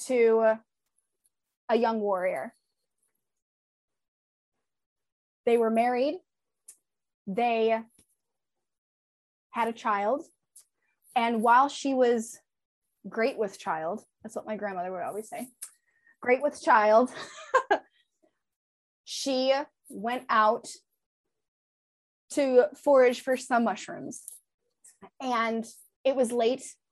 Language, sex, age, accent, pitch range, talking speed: English, female, 20-39, American, 220-260 Hz, 90 wpm